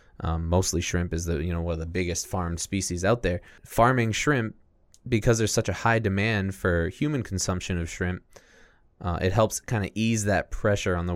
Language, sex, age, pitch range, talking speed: English, male, 20-39, 85-100 Hz, 205 wpm